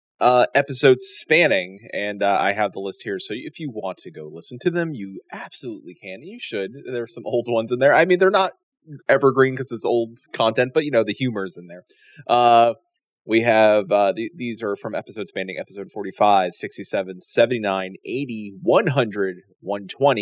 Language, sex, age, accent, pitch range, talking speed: English, male, 30-49, American, 100-135 Hz, 185 wpm